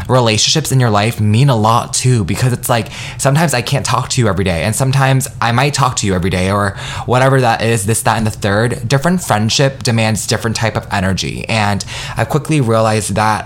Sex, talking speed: male, 220 wpm